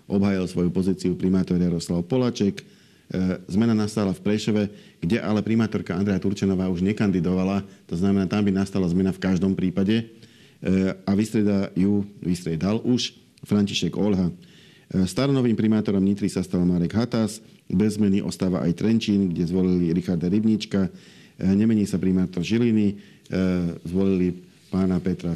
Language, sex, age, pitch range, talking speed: Slovak, male, 50-69, 90-105 Hz, 135 wpm